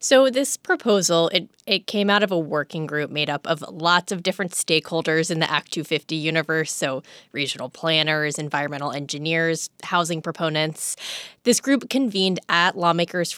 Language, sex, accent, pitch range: English, female, American, 160-205 Hz